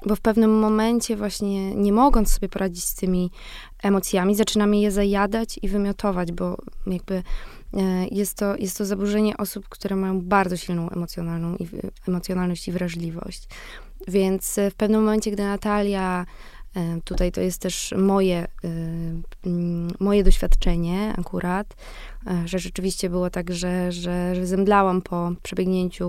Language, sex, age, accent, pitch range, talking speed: Polish, female, 20-39, native, 180-210 Hz, 125 wpm